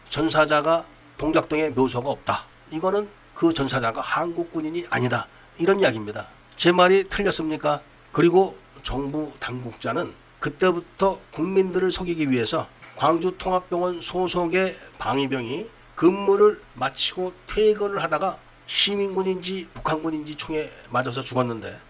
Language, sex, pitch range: Korean, male, 140-185 Hz